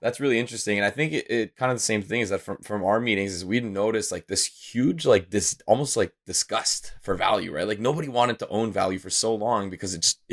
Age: 20-39